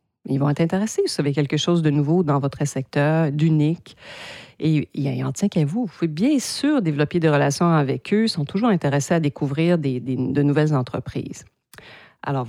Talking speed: 195 wpm